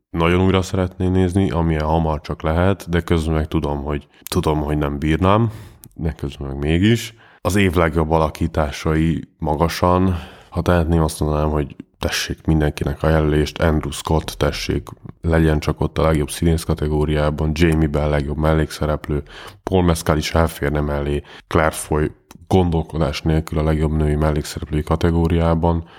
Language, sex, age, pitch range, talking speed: Hungarian, male, 20-39, 75-85 Hz, 145 wpm